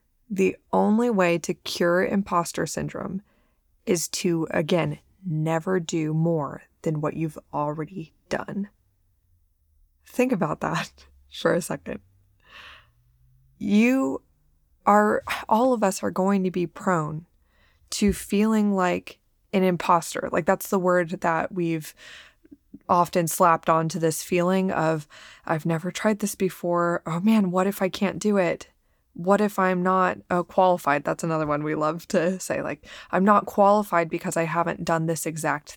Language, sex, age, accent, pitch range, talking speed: English, female, 20-39, American, 160-195 Hz, 145 wpm